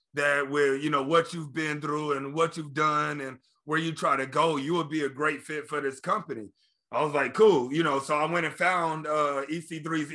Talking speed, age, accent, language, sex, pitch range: 235 wpm, 30-49, American, English, male, 145-170 Hz